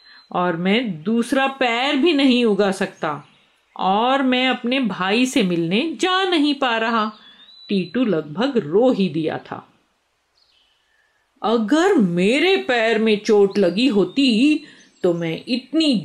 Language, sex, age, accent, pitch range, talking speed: Hindi, female, 50-69, native, 200-315 Hz, 125 wpm